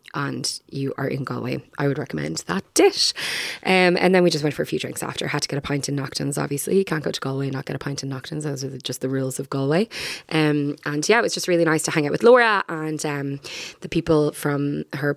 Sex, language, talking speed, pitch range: female, English, 265 wpm, 135-165 Hz